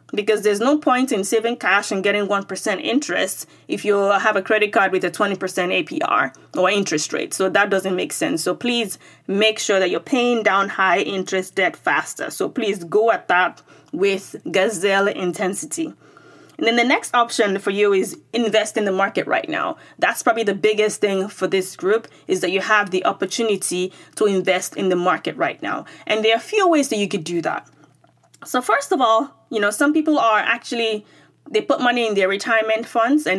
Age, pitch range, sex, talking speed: 20-39, 190-240 Hz, female, 205 wpm